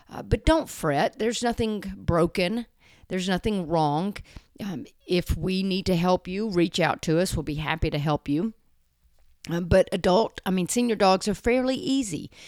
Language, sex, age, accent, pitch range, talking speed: English, female, 40-59, American, 155-210 Hz, 180 wpm